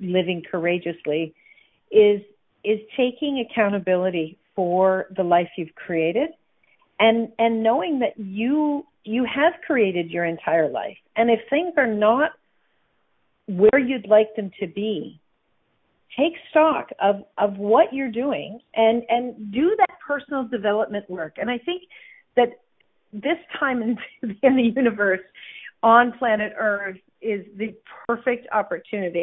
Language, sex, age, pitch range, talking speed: English, female, 50-69, 190-245 Hz, 130 wpm